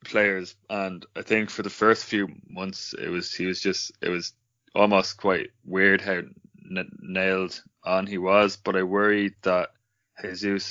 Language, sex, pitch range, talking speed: English, male, 90-100 Hz, 170 wpm